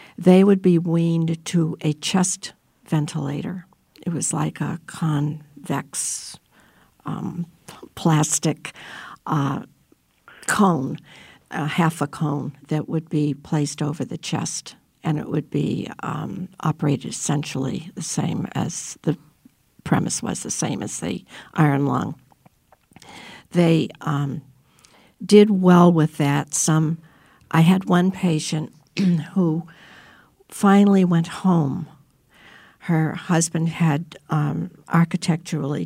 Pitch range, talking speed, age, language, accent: 150-175 Hz, 110 wpm, 60-79, English, American